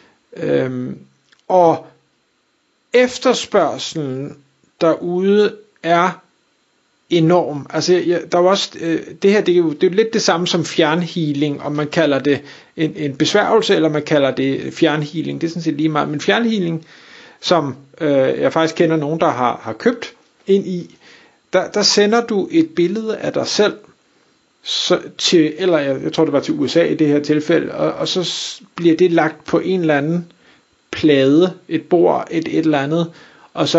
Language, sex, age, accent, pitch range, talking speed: Danish, male, 60-79, native, 145-185 Hz, 175 wpm